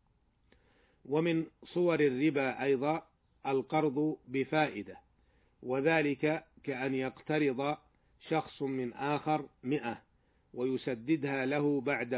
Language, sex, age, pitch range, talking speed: Arabic, male, 40-59, 130-150 Hz, 80 wpm